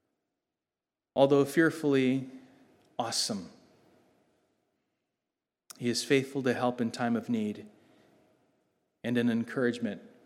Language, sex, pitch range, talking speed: English, male, 125-175 Hz, 90 wpm